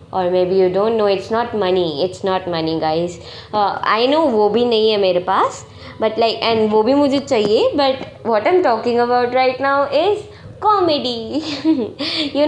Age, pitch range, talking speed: 20-39, 210-300 Hz, 160 wpm